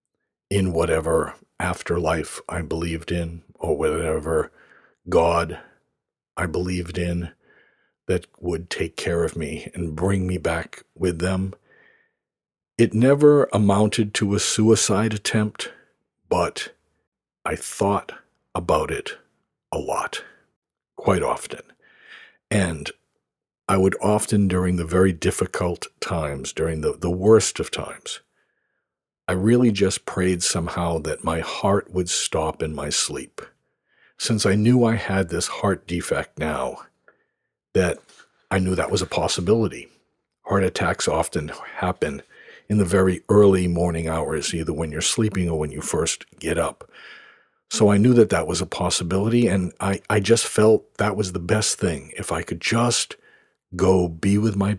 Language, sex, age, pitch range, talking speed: English, male, 60-79, 90-105 Hz, 140 wpm